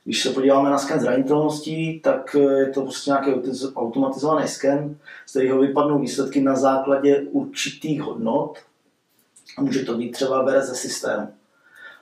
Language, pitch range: Czech, 130-145 Hz